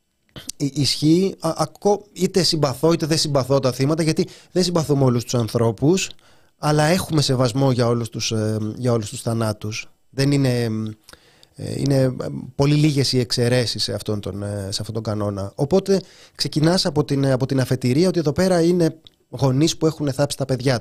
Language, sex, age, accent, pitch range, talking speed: Greek, male, 30-49, native, 120-160 Hz, 160 wpm